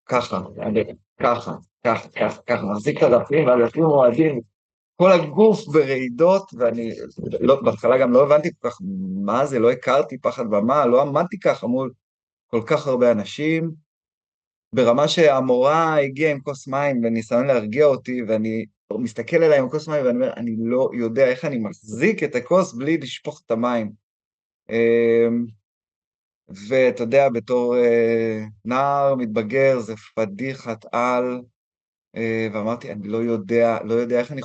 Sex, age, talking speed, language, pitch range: male, 30-49, 140 wpm, Hebrew, 115-145 Hz